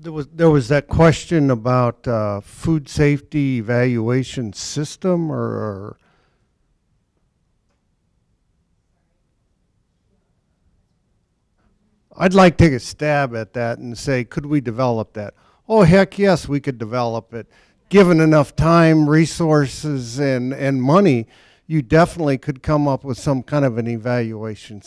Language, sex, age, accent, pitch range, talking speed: English, male, 50-69, American, 120-150 Hz, 125 wpm